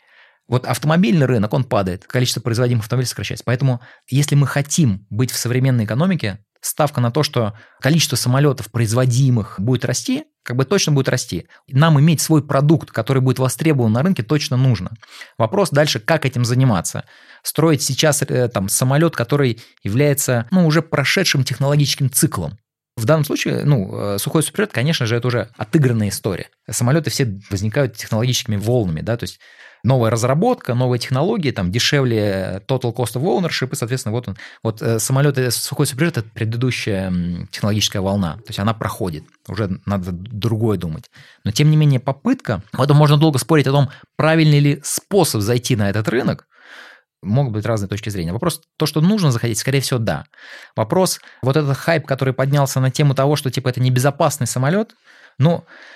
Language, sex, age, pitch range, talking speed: Russian, male, 20-39, 115-145 Hz, 165 wpm